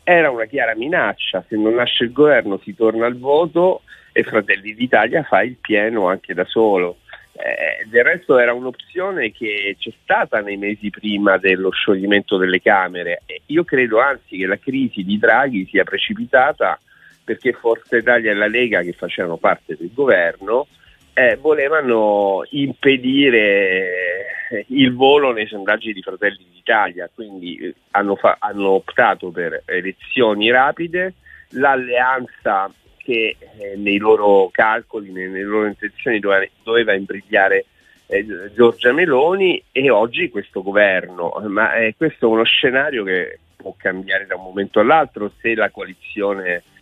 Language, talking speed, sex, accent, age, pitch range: Italian, 145 wpm, male, native, 40-59, 100-165 Hz